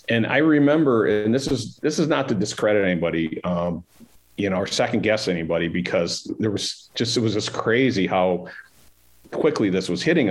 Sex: male